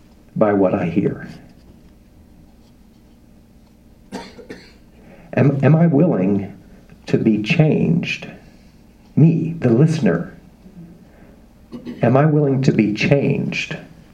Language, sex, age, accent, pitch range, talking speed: English, male, 60-79, American, 100-155 Hz, 85 wpm